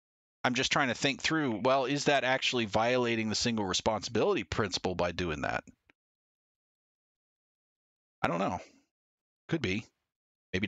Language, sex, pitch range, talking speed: English, male, 100-140 Hz, 135 wpm